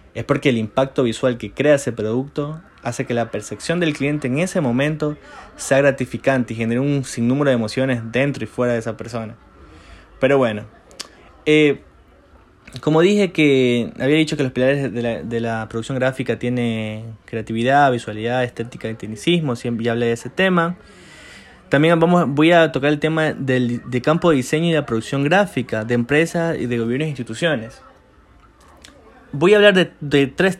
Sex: male